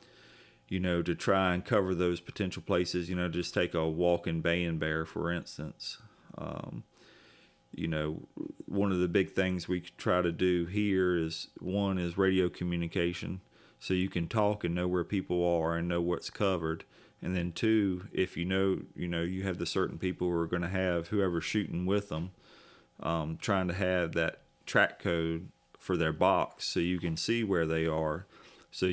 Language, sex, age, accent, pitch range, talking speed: English, male, 30-49, American, 85-95 Hz, 185 wpm